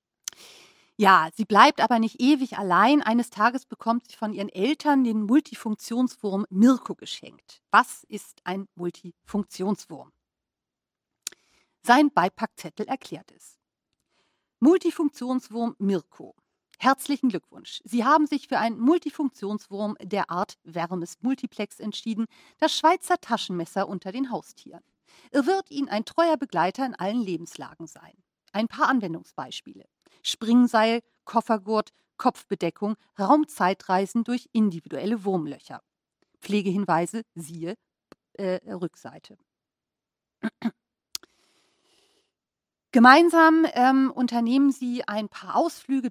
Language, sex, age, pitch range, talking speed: German, female, 40-59, 195-265 Hz, 100 wpm